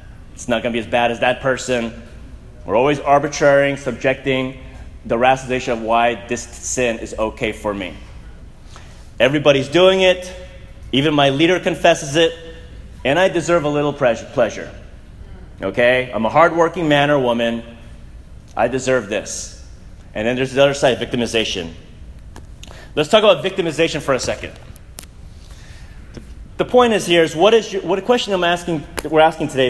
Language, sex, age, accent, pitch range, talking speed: English, male, 30-49, American, 115-180 Hz, 155 wpm